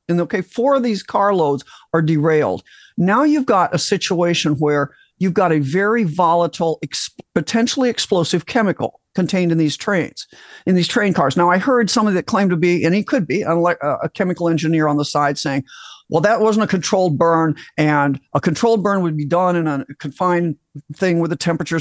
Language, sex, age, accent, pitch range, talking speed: English, male, 50-69, American, 160-210 Hz, 195 wpm